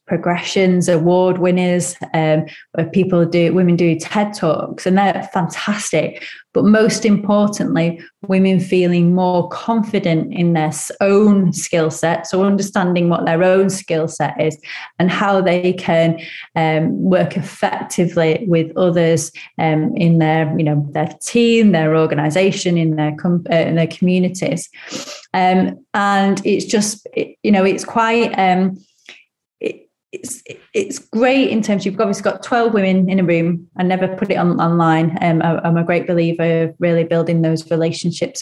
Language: English